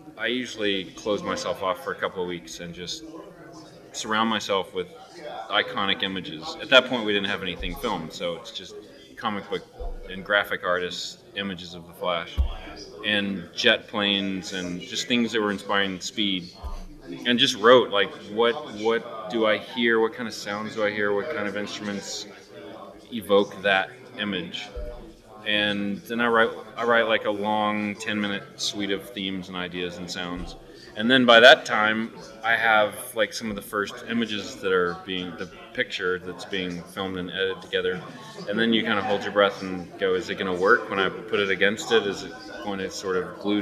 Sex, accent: male, American